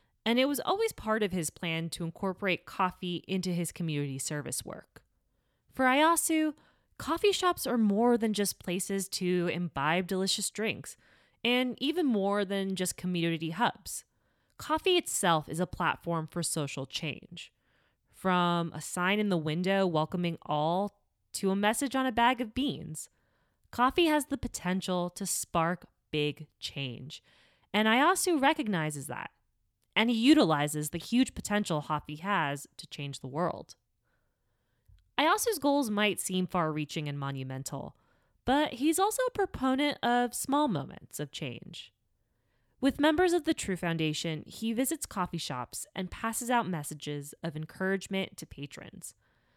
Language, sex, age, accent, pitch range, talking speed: English, female, 20-39, American, 155-230 Hz, 145 wpm